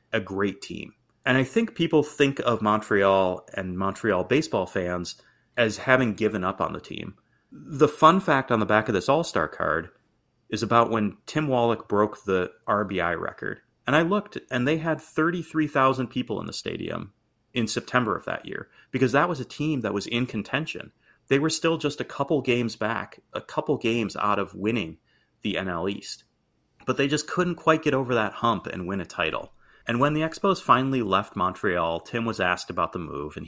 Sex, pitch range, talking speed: male, 95-140 Hz, 195 wpm